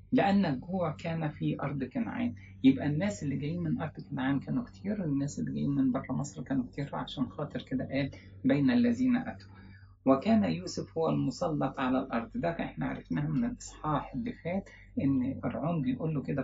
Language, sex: English, male